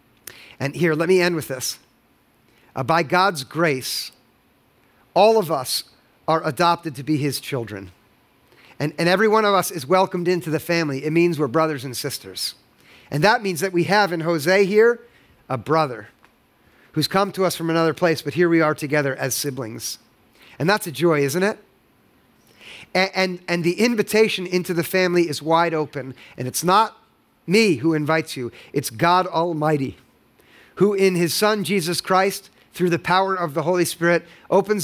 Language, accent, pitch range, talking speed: English, American, 155-190 Hz, 175 wpm